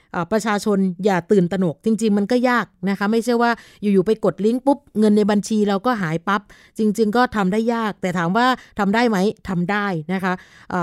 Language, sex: Thai, female